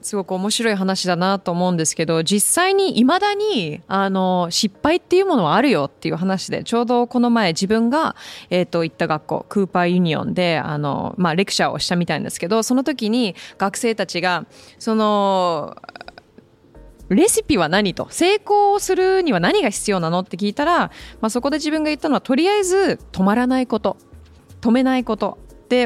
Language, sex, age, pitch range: Japanese, female, 20-39, 185-265 Hz